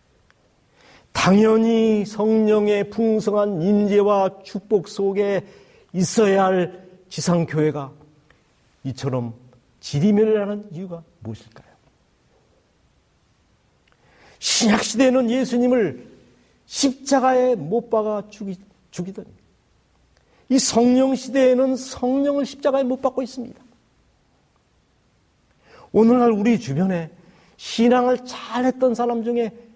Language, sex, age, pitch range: Korean, male, 40-59, 180-250 Hz